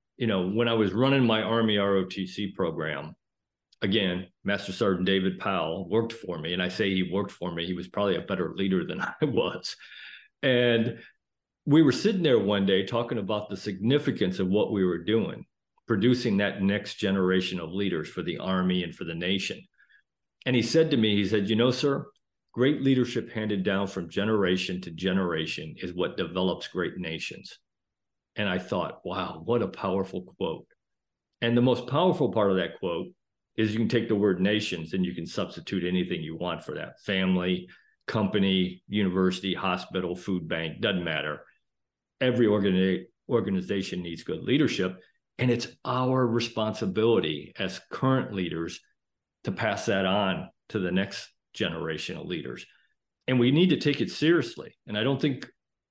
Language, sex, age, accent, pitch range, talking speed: English, male, 50-69, American, 95-115 Hz, 170 wpm